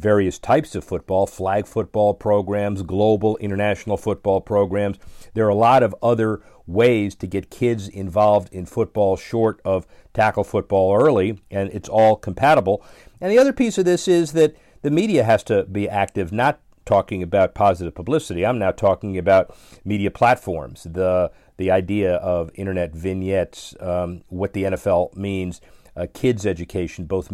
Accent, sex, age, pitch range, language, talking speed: American, male, 50-69, 95-115 Hz, English, 160 wpm